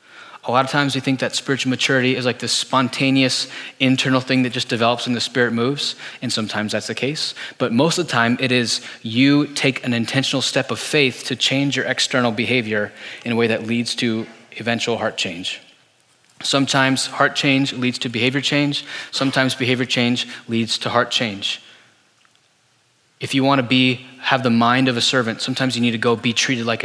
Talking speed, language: 190 wpm, English